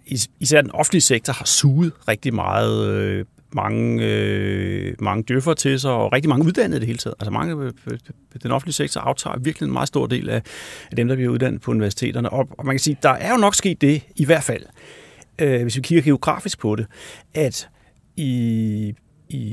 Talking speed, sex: 205 wpm, male